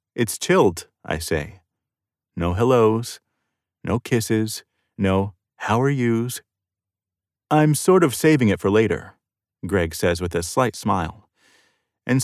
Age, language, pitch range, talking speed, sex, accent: 30-49, English, 95-120 Hz, 125 wpm, male, American